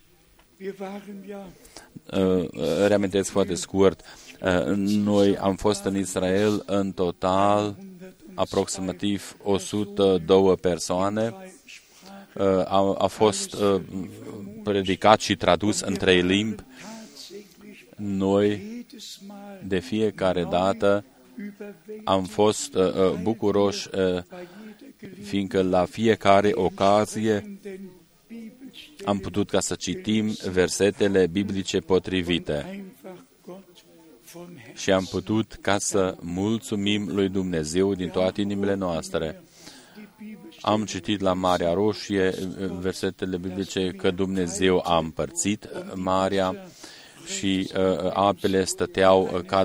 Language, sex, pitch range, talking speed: Romanian, male, 95-110 Hz, 85 wpm